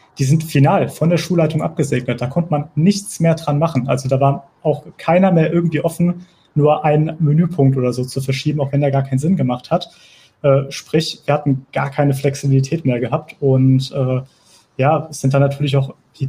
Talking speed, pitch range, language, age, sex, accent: 205 wpm, 135-160 Hz, German, 30-49, male, German